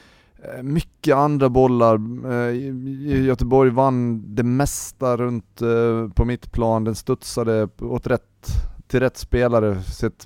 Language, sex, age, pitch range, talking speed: Swedish, male, 30-49, 90-115 Hz, 110 wpm